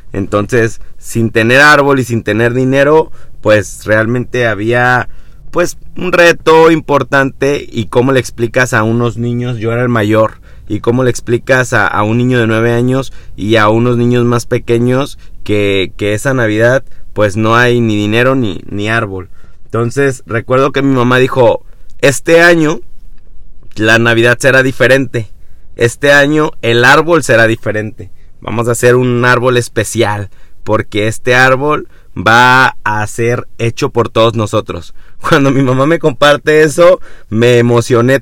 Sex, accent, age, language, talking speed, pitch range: male, Mexican, 30-49, Spanish, 150 wpm, 115-145 Hz